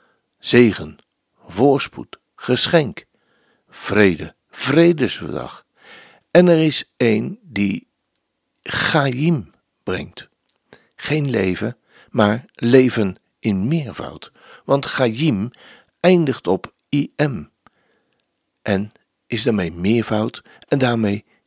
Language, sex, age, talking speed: Dutch, male, 60-79, 80 wpm